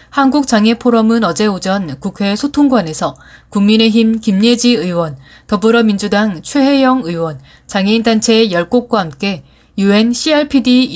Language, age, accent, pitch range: Korean, 30-49, native, 190-235 Hz